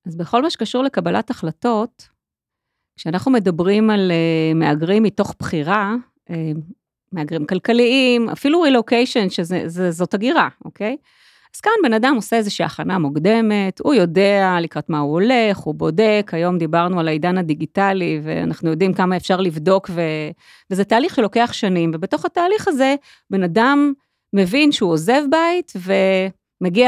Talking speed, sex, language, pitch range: 135 wpm, female, Hebrew, 175-230 Hz